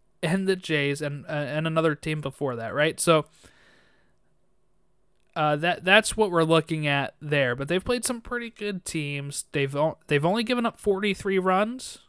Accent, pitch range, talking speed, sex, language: American, 140-175 Hz, 170 wpm, male, English